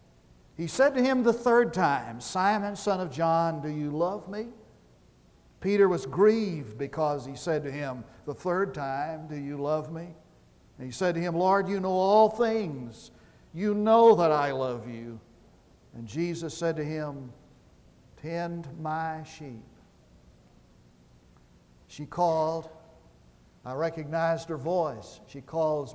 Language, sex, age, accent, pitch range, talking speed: English, male, 60-79, American, 135-185 Hz, 145 wpm